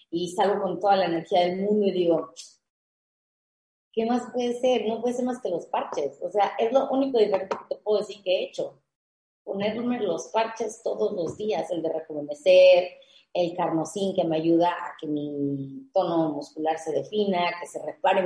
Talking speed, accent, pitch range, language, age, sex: 190 wpm, Mexican, 165-205 Hz, Spanish, 30-49, female